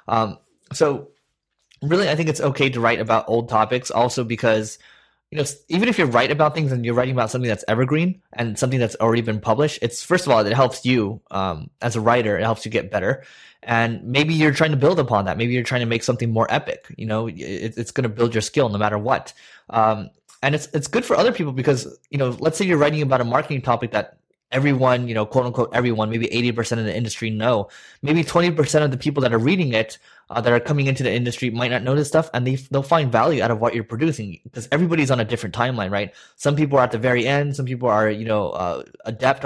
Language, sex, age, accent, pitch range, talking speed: English, male, 20-39, American, 115-145 Hz, 250 wpm